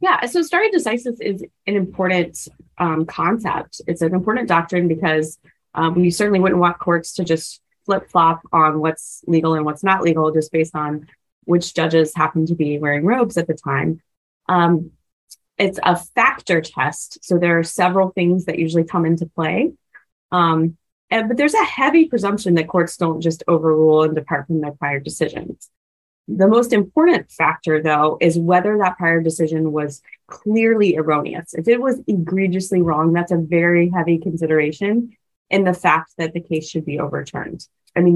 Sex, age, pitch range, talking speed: female, 20-39, 160-190 Hz, 170 wpm